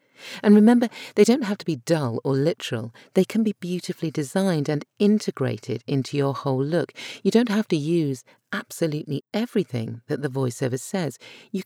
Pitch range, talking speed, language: 120-165 Hz, 170 wpm, English